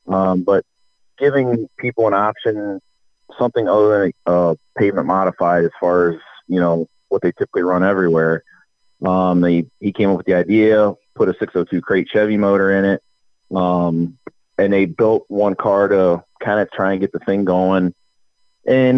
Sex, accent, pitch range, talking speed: male, American, 95-105 Hz, 170 wpm